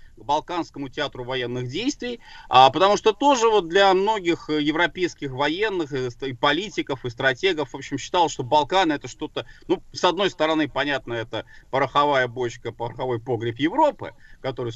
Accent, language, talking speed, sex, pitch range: native, Russian, 150 wpm, male, 120-165 Hz